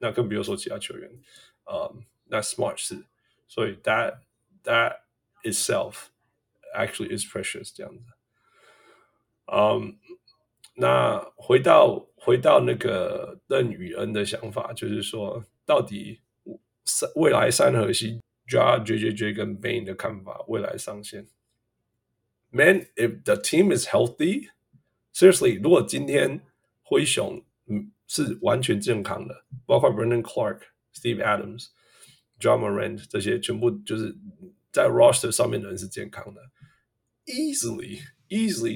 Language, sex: Chinese, male